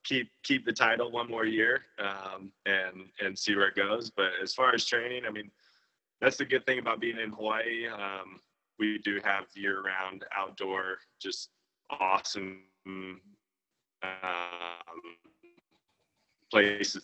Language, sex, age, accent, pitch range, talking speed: English, male, 20-39, American, 100-125 Hz, 140 wpm